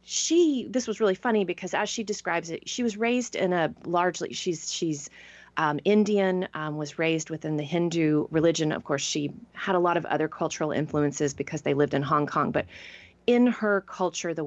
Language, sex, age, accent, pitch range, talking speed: English, female, 30-49, American, 155-225 Hz, 200 wpm